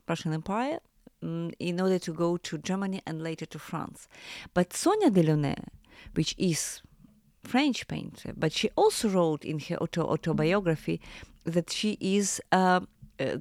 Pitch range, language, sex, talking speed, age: 155-190 Hz, English, female, 145 wpm, 30-49